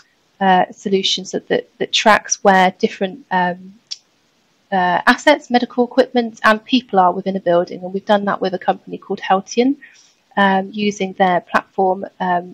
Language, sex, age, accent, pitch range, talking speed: English, female, 30-49, British, 190-220 Hz, 160 wpm